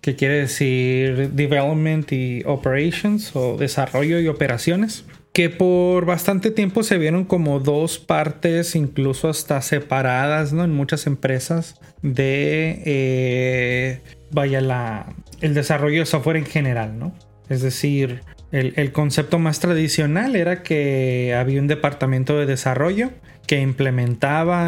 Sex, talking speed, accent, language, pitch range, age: male, 130 wpm, Mexican, Spanish, 130-160 Hz, 30-49